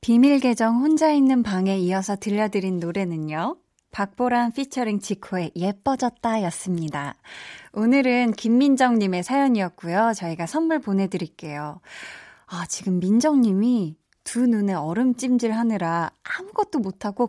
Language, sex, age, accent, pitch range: Korean, female, 20-39, native, 195-270 Hz